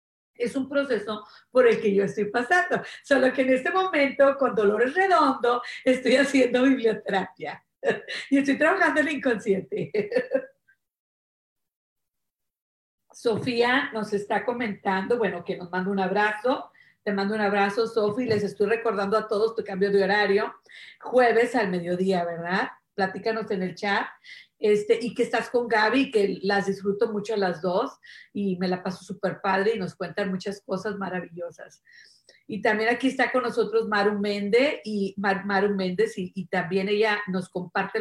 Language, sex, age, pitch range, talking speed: Spanish, female, 40-59, 200-250 Hz, 155 wpm